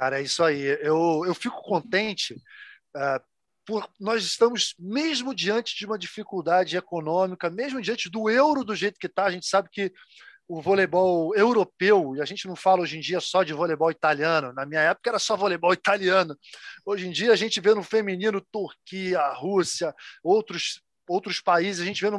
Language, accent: Portuguese, Brazilian